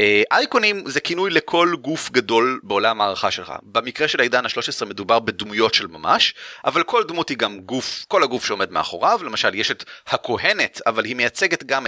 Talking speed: 175 wpm